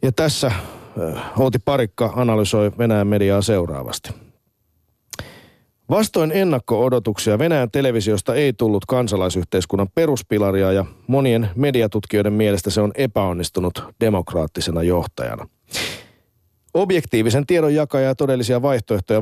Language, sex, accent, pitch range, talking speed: Finnish, male, native, 105-140 Hz, 95 wpm